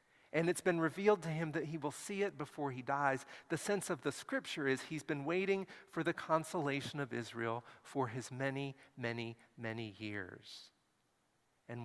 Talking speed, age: 175 wpm, 40-59